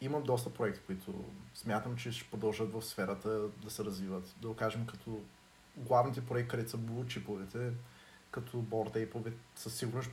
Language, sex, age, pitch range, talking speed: Bulgarian, male, 20-39, 110-125 Hz, 150 wpm